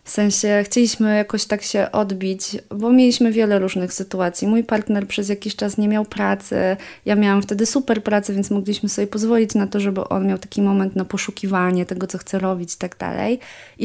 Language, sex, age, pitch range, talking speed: Polish, female, 20-39, 180-215 Hz, 200 wpm